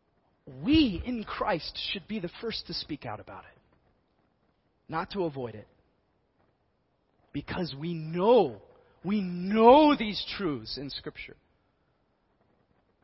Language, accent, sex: English, American, male